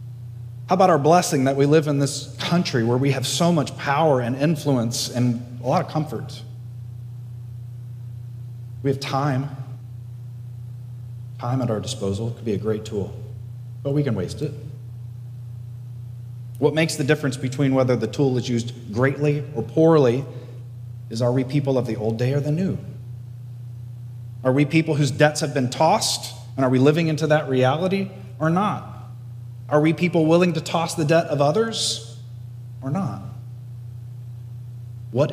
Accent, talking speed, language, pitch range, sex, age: American, 160 wpm, English, 120-140 Hz, male, 40-59